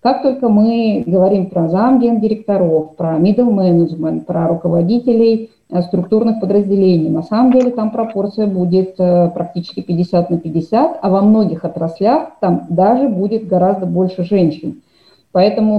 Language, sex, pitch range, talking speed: Russian, female, 175-220 Hz, 130 wpm